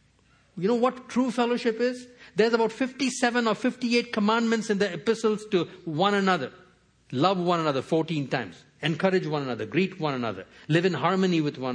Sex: male